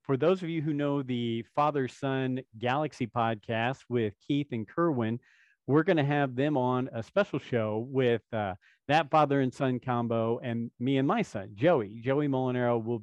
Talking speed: 185 wpm